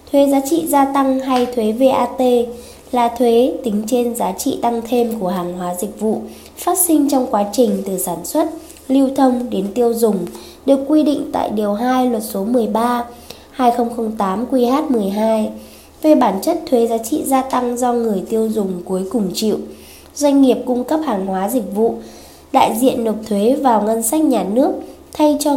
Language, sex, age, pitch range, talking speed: Vietnamese, female, 20-39, 210-260 Hz, 180 wpm